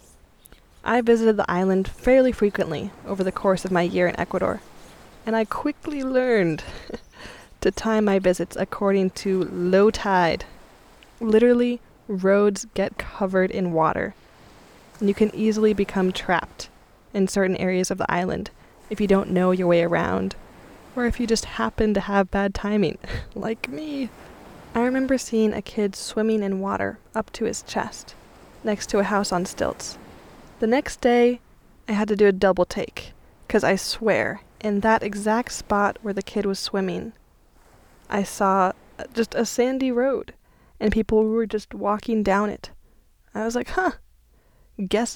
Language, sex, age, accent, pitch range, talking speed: English, female, 10-29, American, 190-230 Hz, 160 wpm